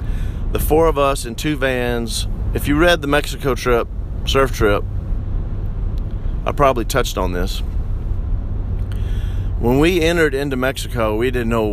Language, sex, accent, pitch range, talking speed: English, male, American, 95-125 Hz, 145 wpm